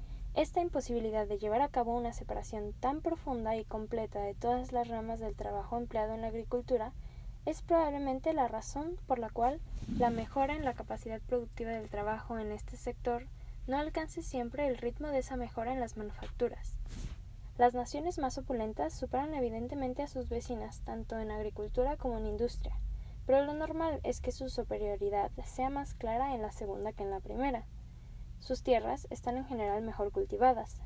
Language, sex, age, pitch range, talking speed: Spanish, female, 10-29, 215-270 Hz, 175 wpm